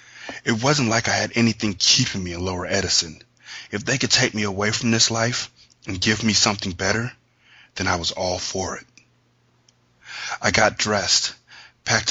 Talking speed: 175 wpm